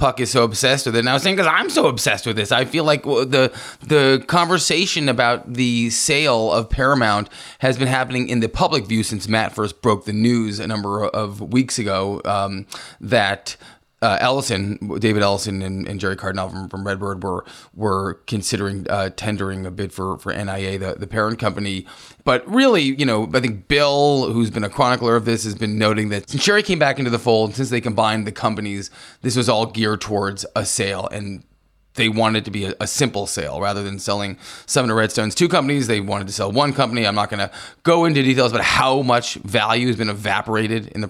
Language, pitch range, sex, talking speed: English, 100-125 Hz, male, 210 wpm